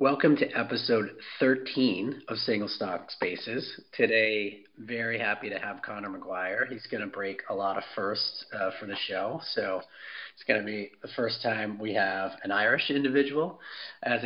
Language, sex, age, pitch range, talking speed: English, male, 40-59, 100-135 Hz, 175 wpm